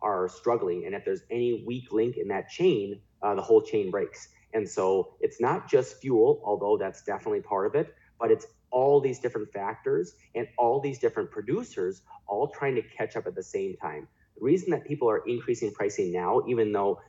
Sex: male